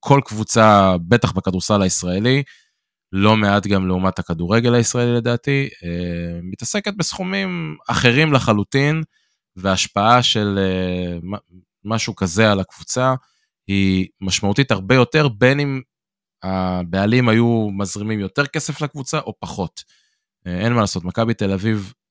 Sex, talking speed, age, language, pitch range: male, 115 wpm, 20-39, Hebrew, 95-115 Hz